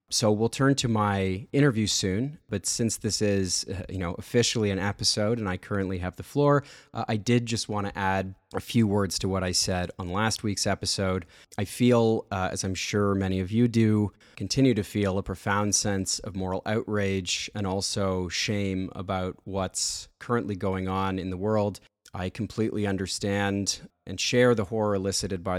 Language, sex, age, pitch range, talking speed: English, male, 30-49, 95-105 Hz, 190 wpm